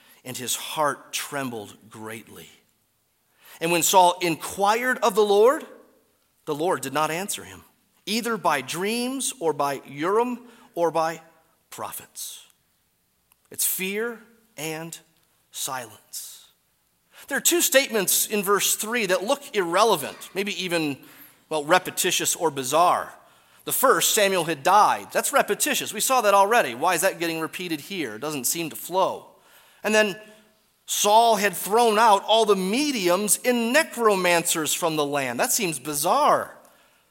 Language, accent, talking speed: English, American, 140 wpm